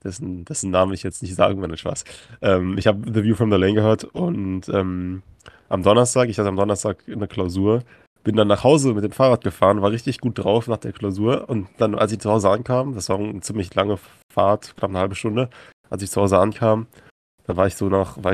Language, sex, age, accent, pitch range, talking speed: German, male, 20-39, German, 95-115 Hz, 240 wpm